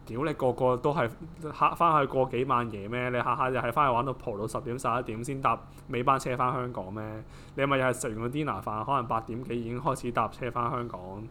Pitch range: 115-150 Hz